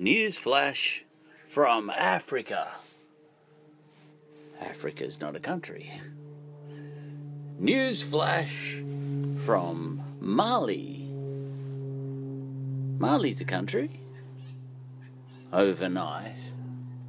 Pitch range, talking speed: 110-145 Hz, 55 wpm